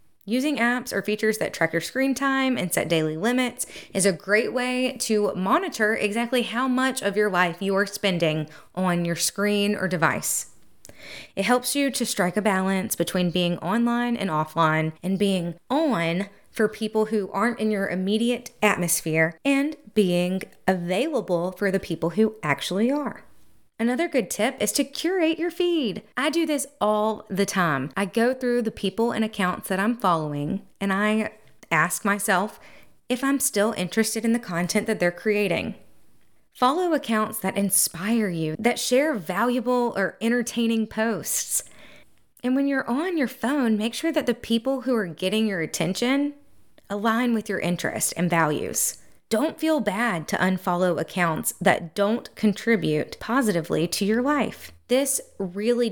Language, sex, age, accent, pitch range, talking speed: English, female, 20-39, American, 185-240 Hz, 160 wpm